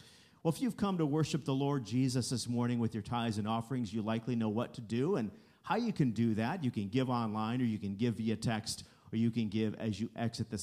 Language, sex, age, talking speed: English, male, 50-69, 260 wpm